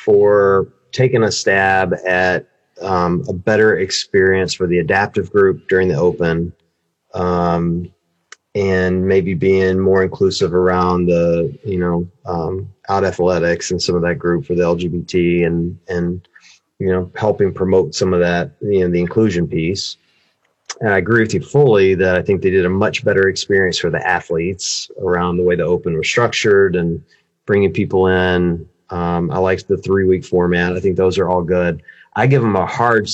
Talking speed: 175 wpm